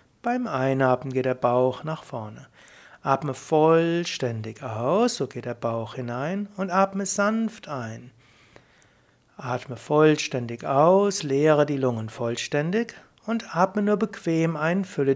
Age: 60-79